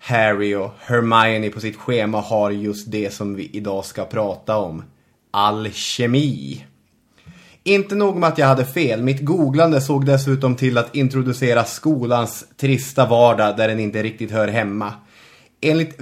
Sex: male